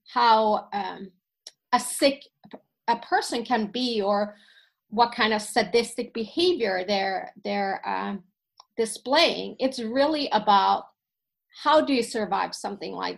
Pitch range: 200-230 Hz